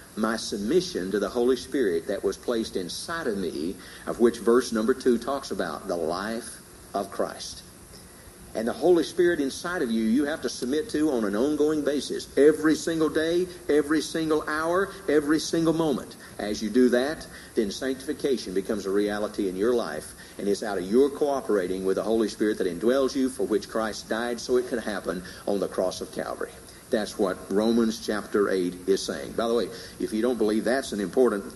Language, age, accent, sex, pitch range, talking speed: English, 50-69, American, male, 115-155 Hz, 195 wpm